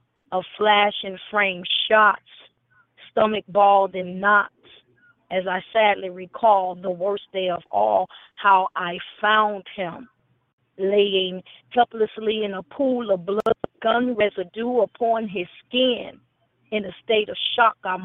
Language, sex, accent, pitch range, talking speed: English, female, American, 190-225 Hz, 120 wpm